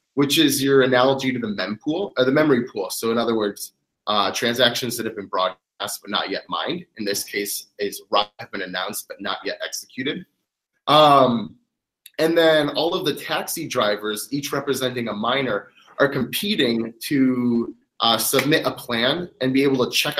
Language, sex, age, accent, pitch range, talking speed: English, male, 30-49, American, 120-150 Hz, 180 wpm